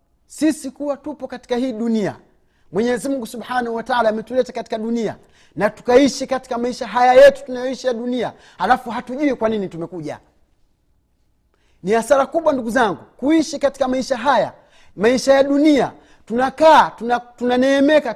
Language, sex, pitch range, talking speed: Swahili, male, 205-260 Hz, 140 wpm